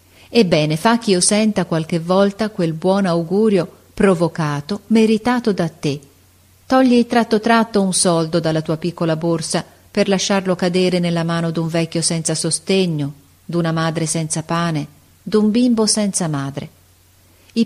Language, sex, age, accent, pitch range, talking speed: Italian, female, 40-59, native, 155-215 Hz, 135 wpm